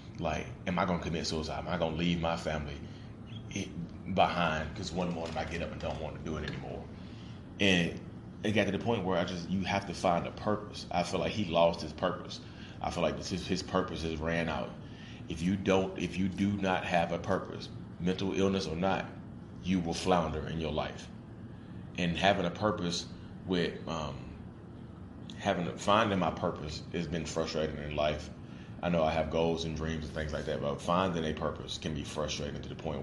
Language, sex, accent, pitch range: English, male, American, 80-95 Hz